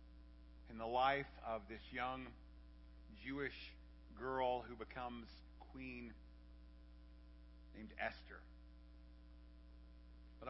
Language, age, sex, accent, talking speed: English, 50-69, male, American, 80 wpm